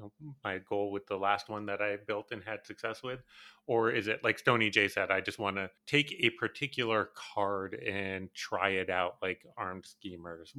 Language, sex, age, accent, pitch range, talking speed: English, male, 30-49, American, 100-125 Hz, 200 wpm